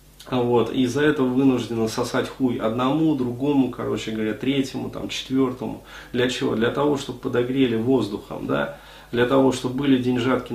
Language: Russian